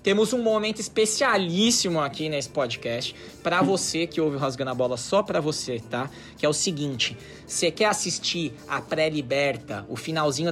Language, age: Portuguese, 20-39